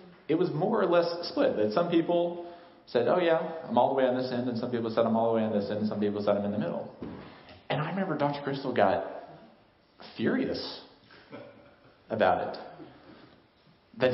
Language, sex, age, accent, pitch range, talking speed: English, male, 40-59, American, 115-175 Hz, 205 wpm